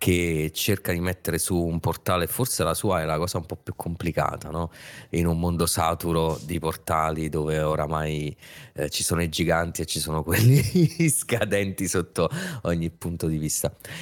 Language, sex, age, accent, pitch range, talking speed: Italian, male, 30-49, native, 80-105 Hz, 175 wpm